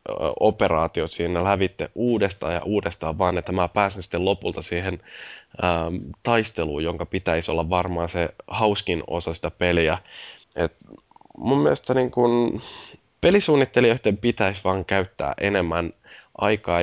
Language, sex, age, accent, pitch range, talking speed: Finnish, male, 10-29, native, 85-110 Hz, 125 wpm